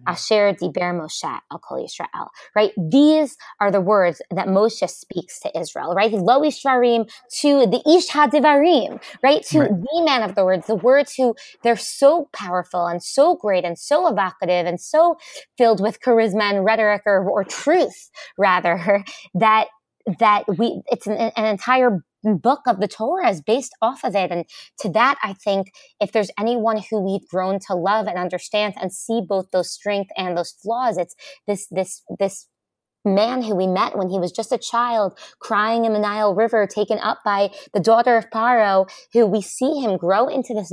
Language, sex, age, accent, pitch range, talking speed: English, female, 20-39, American, 190-240 Hz, 180 wpm